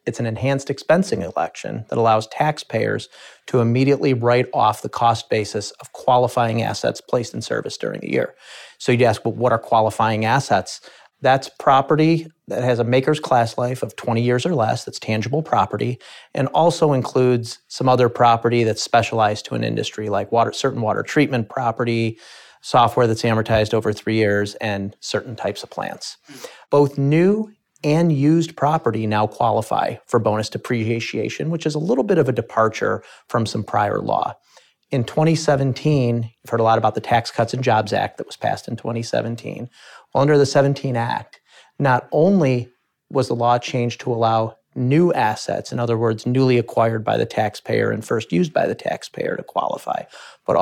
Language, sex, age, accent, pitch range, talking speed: English, male, 30-49, American, 115-135 Hz, 175 wpm